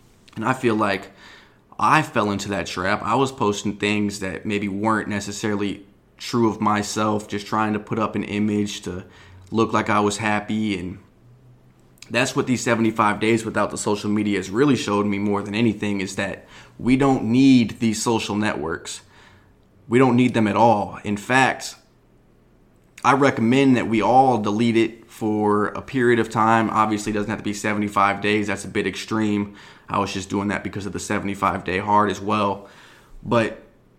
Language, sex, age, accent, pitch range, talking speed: English, male, 20-39, American, 100-115 Hz, 180 wpm